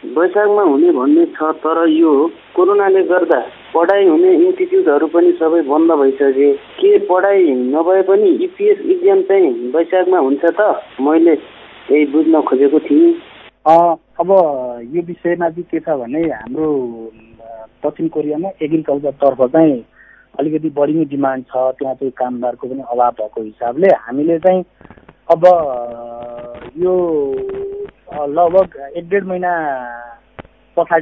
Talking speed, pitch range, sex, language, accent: 95 wpm, 135-175 Hz, male, English, Indian